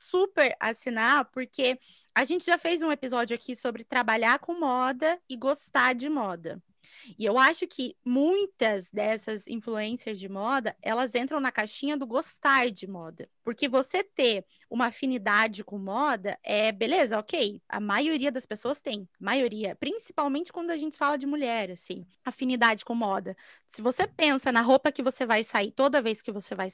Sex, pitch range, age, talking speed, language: female, 220-290 Hz, 20-39, 170 wpm, Portuguese